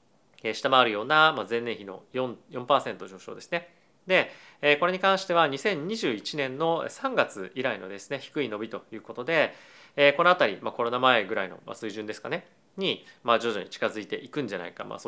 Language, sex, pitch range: Japanese, male, 115-160 Hz